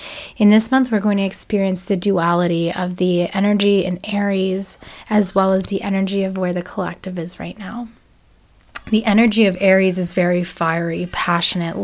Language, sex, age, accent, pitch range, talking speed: English, female, 10-29, American, 185-215 Hz, 170 wpm